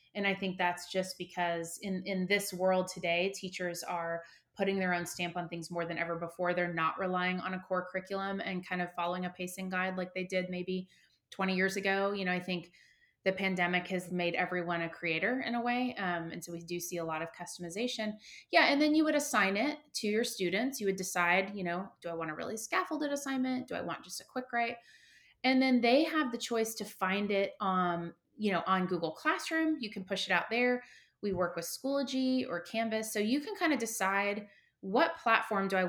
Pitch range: 175-225 Hz